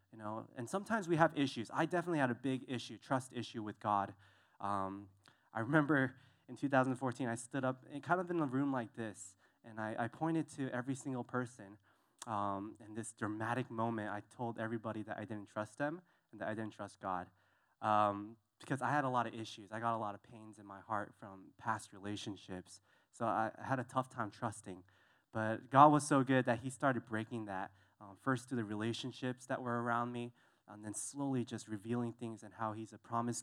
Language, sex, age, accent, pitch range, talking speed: English, male, 20-39, American, 110-140 Hz, 210 wpm